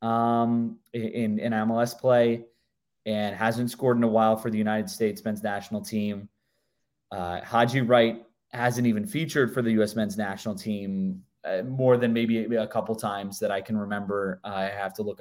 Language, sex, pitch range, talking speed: English, male, 105-130 Hz, 185 wpm